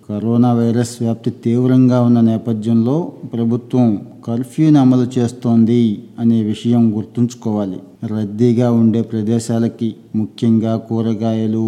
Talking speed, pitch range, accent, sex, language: 90 wpm, 110-125 Hz, native, male, Telugu